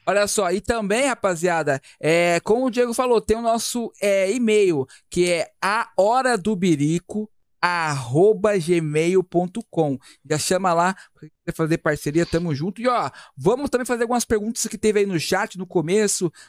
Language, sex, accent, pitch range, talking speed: Portuguese, male, Brazilian, 180-225 Hz, 145 wpm